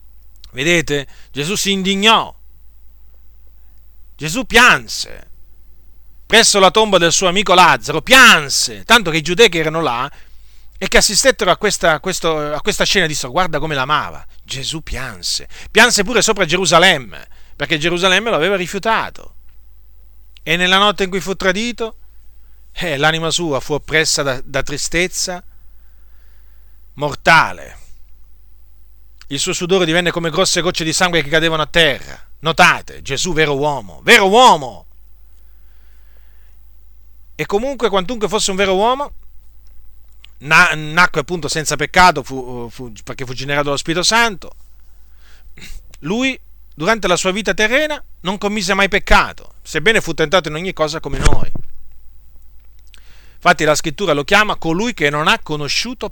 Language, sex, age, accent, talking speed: Italian, male, 40-59, native, 135 wpm